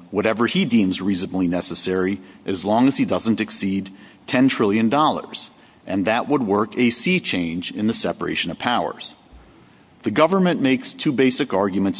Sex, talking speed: male, 155 wpm